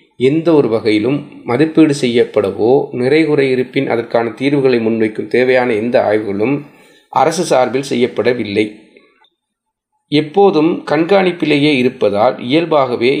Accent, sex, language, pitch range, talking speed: native, male, Tamil, 120-155 Hz, 80 wpm